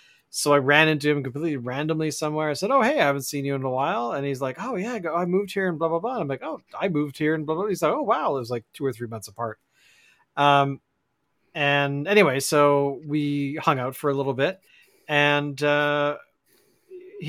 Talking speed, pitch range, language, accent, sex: 230 wpm, 135-165 Hz, English, American, male